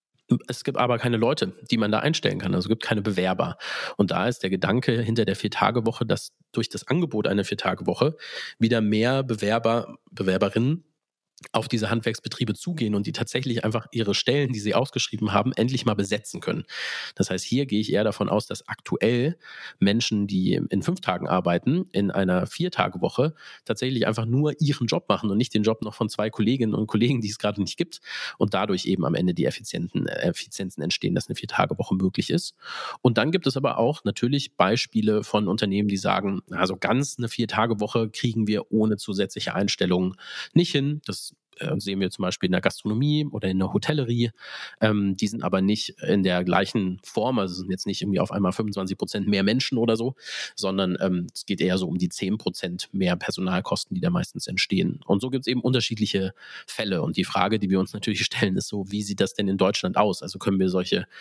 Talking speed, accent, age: 205 wpm, German, 40-59